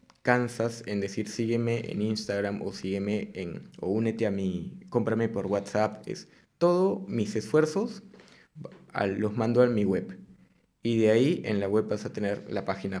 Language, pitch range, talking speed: Spanish, 105-125 Hz, 165 wpm